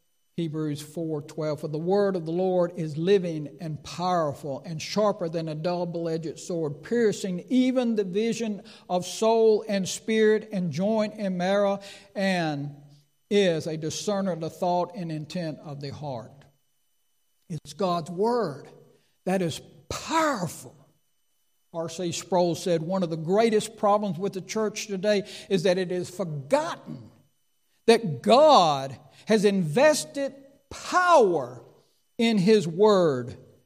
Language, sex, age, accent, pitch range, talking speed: English, male, 60-79, American, 165-225 Hz, 130 wpm